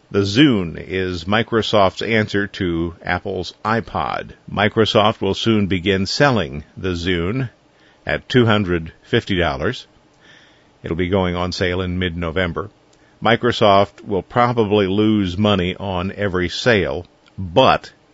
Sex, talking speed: male, 110 wpm